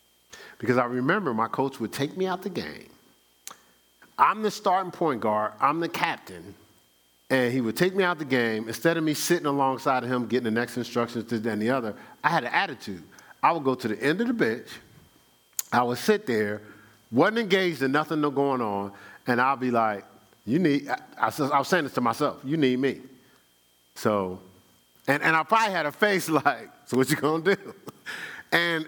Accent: American